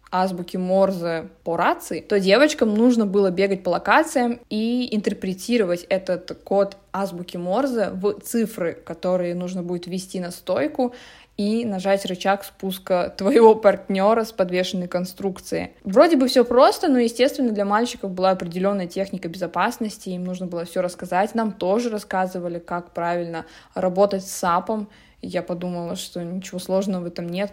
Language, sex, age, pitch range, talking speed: Russian, female, 20-39, 180-225 Hz, 145 wpm